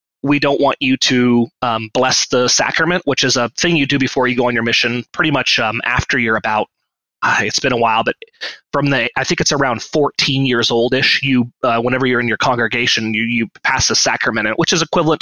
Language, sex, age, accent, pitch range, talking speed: English, male, 30-49, American, 120-145 Hz, 225 wpm